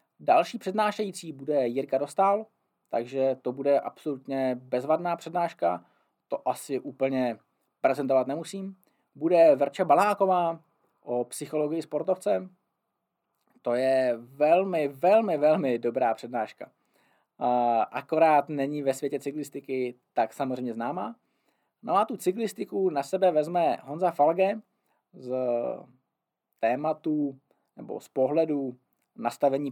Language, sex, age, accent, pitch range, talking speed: Czech, male, 20-39, native, 125-170 Hz, 105 wpm